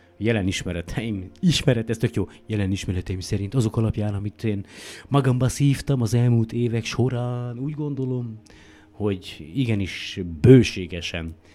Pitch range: 95-115 Hz